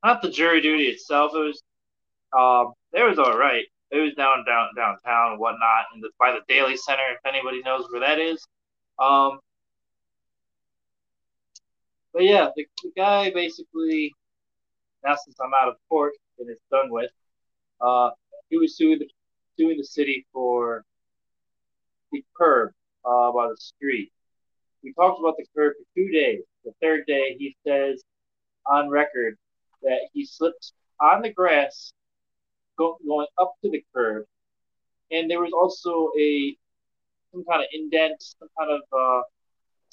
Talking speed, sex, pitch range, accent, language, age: 155 wpm, male, 135-190 Hz, American, English, 20-39